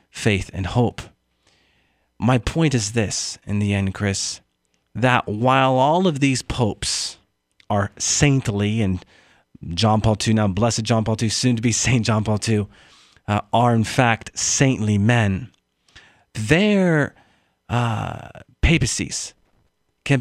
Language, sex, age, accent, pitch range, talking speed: English, male, 40-59, American, 100-135 Hz, 135 wpm